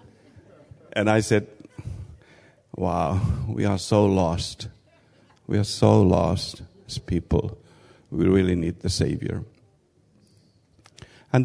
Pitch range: 95-115 Hz